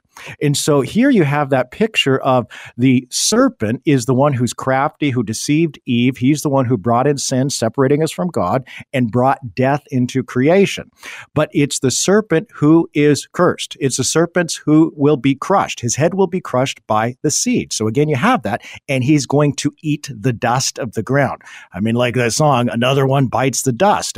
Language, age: English, 50-69